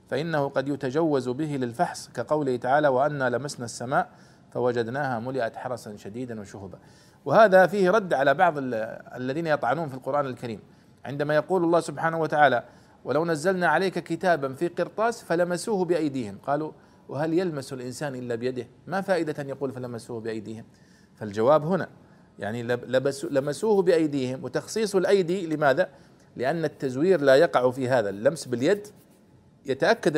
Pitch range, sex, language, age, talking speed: 125-165 Hz, male, Arabic, 40-59, 135 wpm